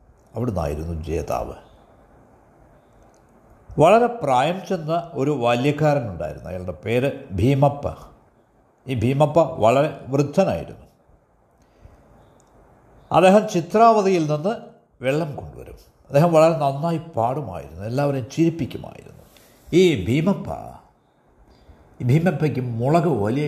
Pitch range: 110-160 Hz